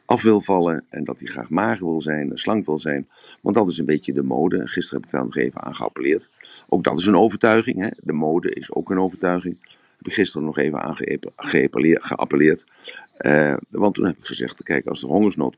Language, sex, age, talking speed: Dutch, male, 50-69, 225 wpm